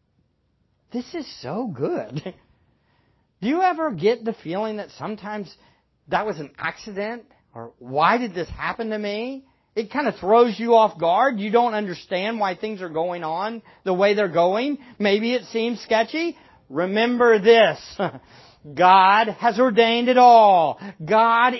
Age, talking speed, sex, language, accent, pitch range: 50-69, 150 wpm, male, English, American, 130-220 Hz